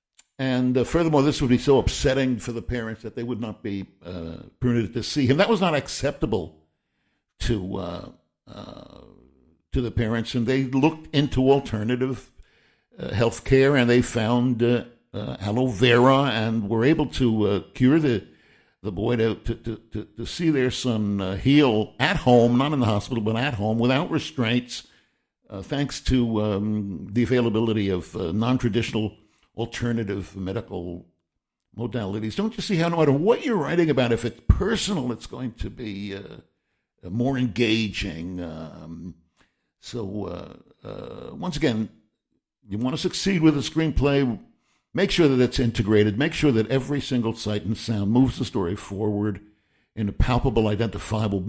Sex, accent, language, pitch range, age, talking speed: male, American, English, 105-135 Hz, 60-79, 165 wpm